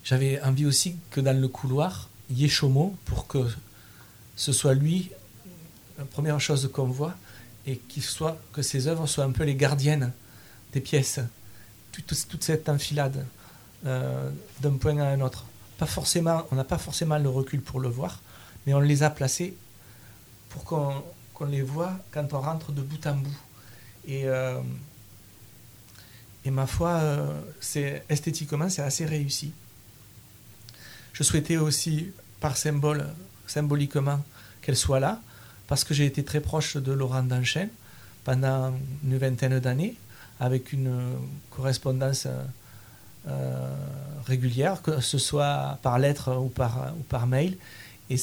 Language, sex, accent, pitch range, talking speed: French, male, French, 120-145 Hz, 150 wpm